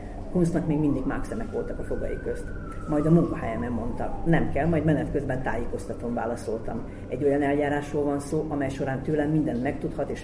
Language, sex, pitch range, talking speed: Hungarian, female, 110-145 Hz, 180 wpm